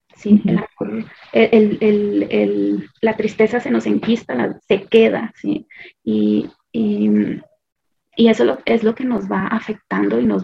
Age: 30-49